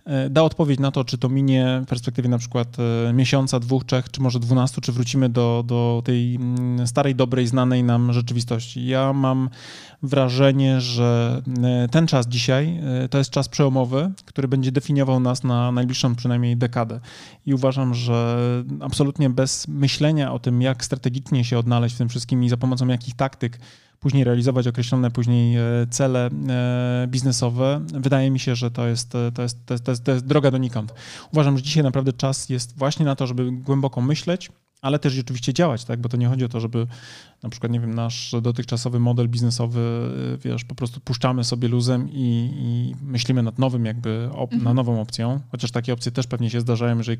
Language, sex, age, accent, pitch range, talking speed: Polish, male, 20-39, native, 120-135 Hz, 175 wpm